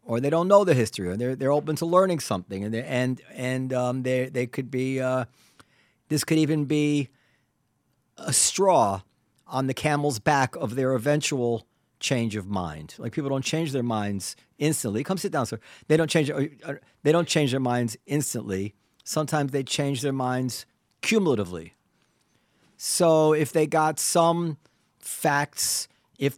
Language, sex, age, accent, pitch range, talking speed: English, male, 50-69, American, 125-155 Hz, 170 wpm